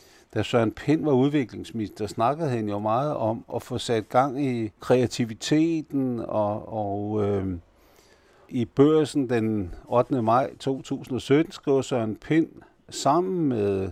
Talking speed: 130 wpm